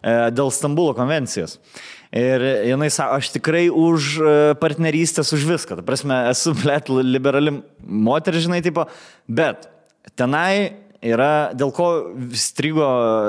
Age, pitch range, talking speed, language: 20-39, 125-160 Hz, 110 wpm, English